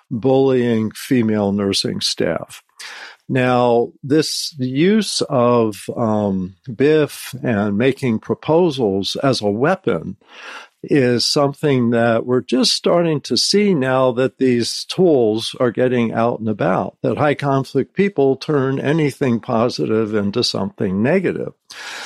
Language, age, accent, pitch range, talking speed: English, 50-69, American, 115-145 Hz, 115 wpm